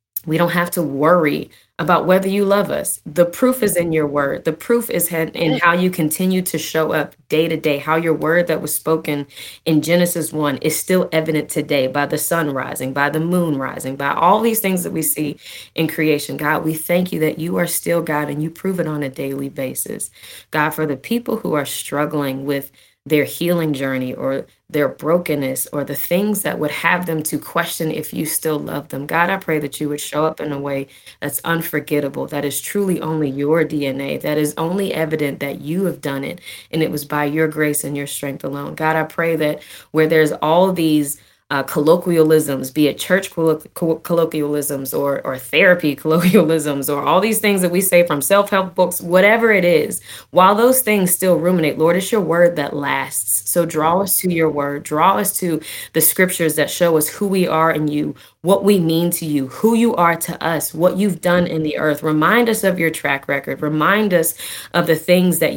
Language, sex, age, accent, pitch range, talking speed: English, female, 20-39, American, 150-175 Hz, 210 wpm